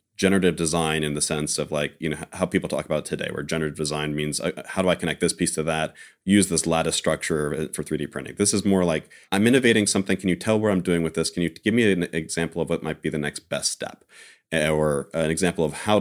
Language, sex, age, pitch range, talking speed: English, male, 30-49, 80-95 Hz, 260 wpm